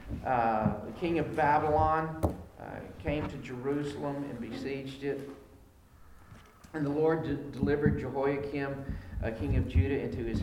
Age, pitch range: 50-69, 110-145 Hz